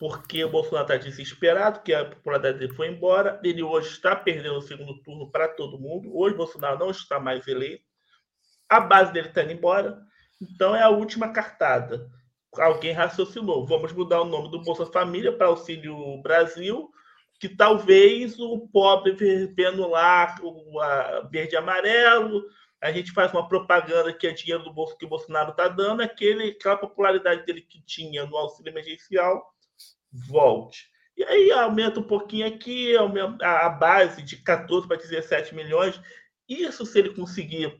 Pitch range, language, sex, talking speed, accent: 160-205 Hz, Portuguese, male, 160 wpm, Brazilian